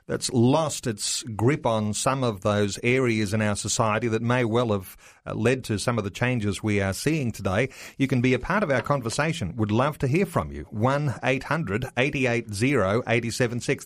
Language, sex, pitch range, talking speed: English, male, 110-140 Hz, 175 wpm